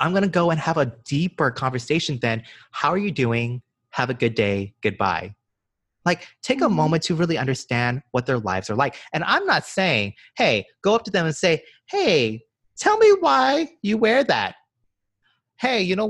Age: 30-49